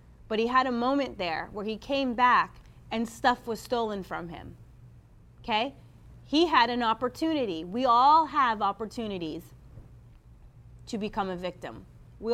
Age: 30-49